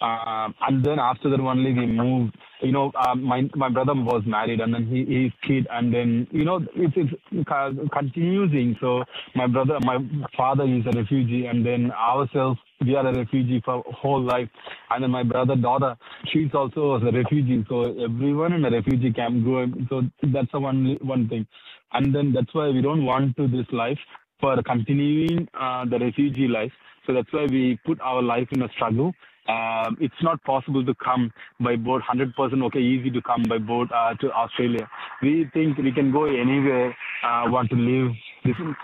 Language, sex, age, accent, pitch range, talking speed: Malayalam, male, 20-39, native, 120-140 Hz, 195 wpm